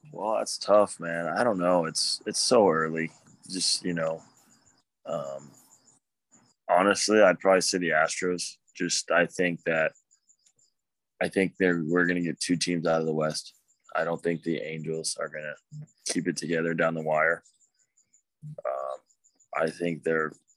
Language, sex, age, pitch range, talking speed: English, male, 20-39, 80-90 Hz, 165 wpm